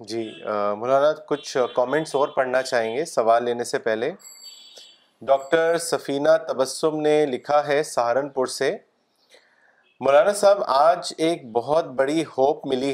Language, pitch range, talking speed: Urdu, 140-180 Hz, 130 wpm